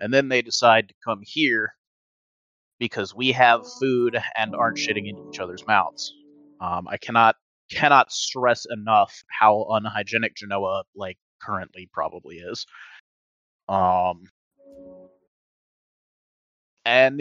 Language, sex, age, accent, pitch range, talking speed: English, male, 30-49, American, 105-155 Hz, 115 wpm